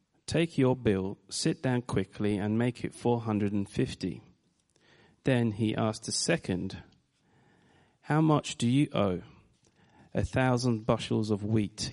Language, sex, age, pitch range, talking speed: English, male, 30-49, 100-120 Hz, 125 wpm